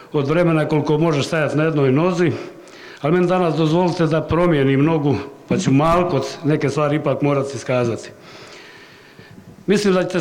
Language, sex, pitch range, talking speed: Croatian, male, 140-160 Hz, 155 wpm